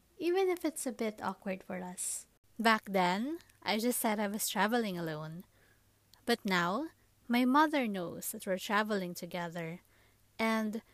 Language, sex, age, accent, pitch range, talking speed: English, female, 20-39, Filipino, 175-225 Hz, 150 wpm